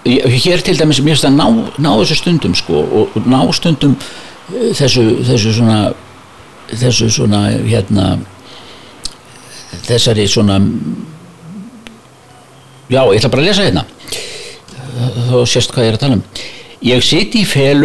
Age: 60-79